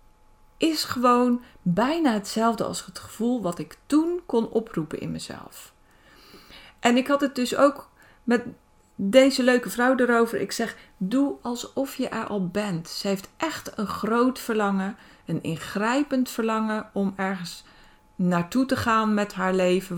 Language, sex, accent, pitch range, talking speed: Dutch, female, Dutch, 180-245 Hz, 150 wpm